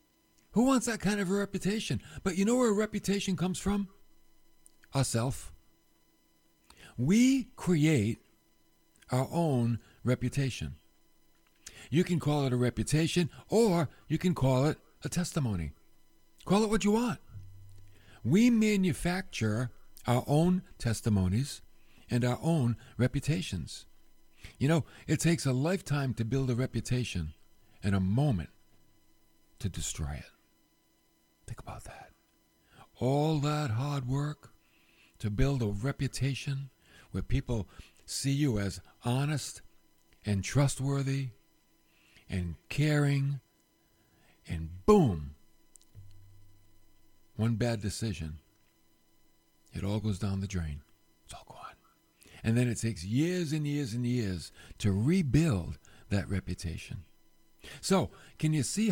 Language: English